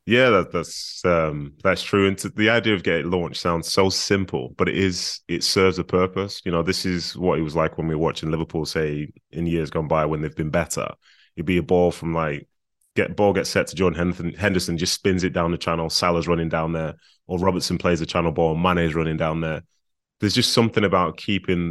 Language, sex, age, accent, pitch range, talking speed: English, male, 20-39, British, 85-100 Hz, 230 wpm